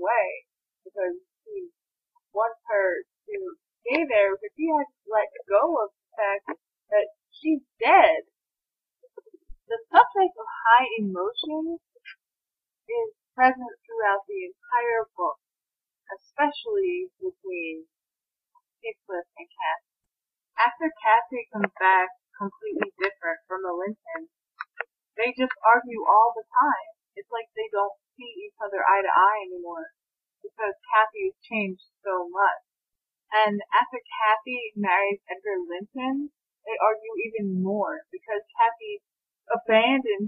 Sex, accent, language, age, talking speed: female, American, English, 30-49, 115 wpm